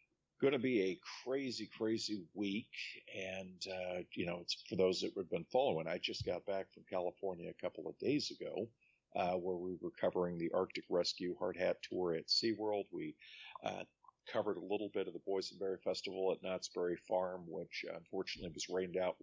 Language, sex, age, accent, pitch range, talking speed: English, male, 50-69, American, 90-105 Hz, 185 wpm